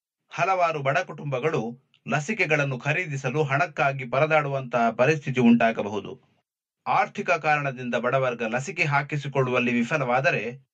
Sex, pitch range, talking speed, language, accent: male, 125-155 Hz, 85 wpm, Kannada, native